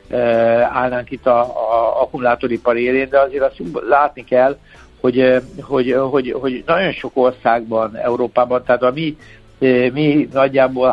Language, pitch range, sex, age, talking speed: Hungarian, 120-135 Hz, male, 60-79, 125 wpm